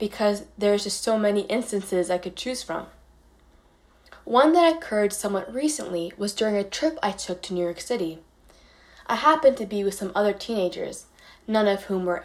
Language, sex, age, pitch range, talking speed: English, female, 10-29, 180-245 Hz, 180 wpm